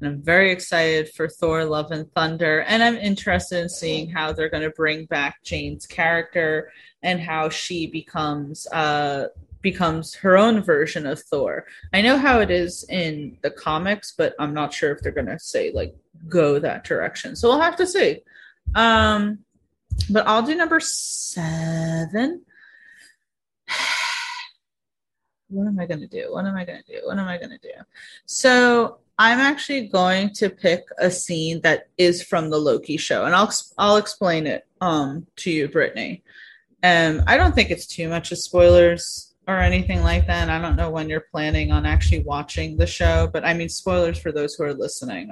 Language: English